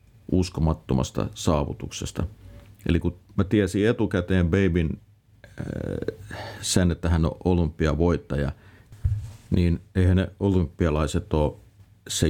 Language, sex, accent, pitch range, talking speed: Finnish, male, native, 75-100 Hz, 100 wpm